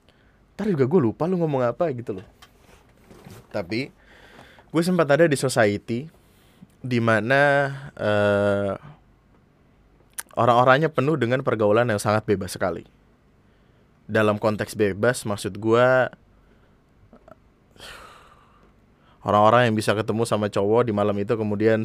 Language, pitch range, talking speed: Indonesian, 105-120 Hz, 115 wpm